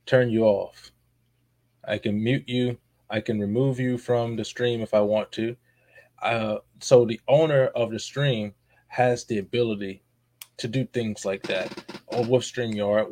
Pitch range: 105-125 Hz